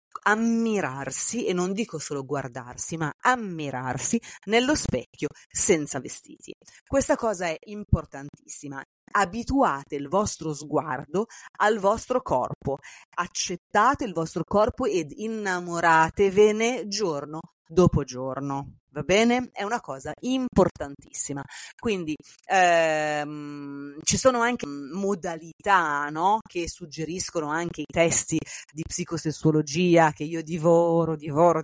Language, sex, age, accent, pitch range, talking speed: Italian, female, 30-49, native, 150-200 Hz, 105 wpm